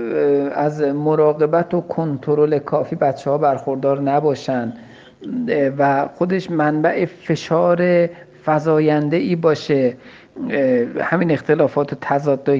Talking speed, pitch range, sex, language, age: 90 wpm, 140-175 Hz, male, Persian, 50-69